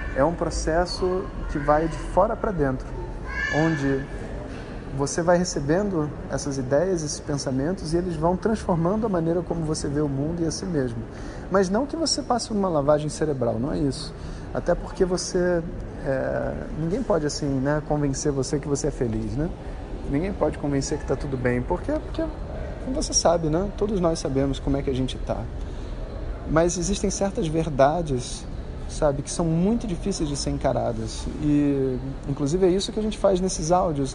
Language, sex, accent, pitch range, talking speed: Portuguese, male, Brazilian, 135-175 Hz, 180 wpm